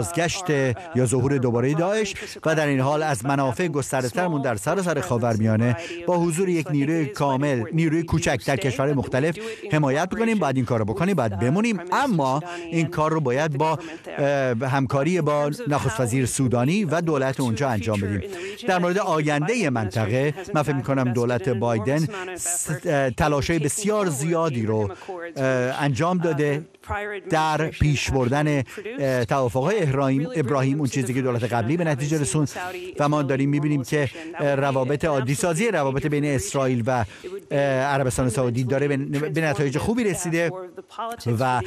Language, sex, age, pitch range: Persian, male, 50-69, 130-170 Hz